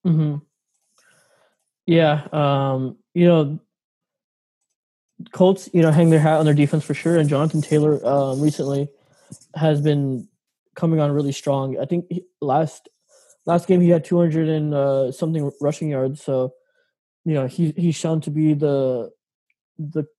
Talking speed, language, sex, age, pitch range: 150 wpm, English, male, 20-39, 140-165 Hz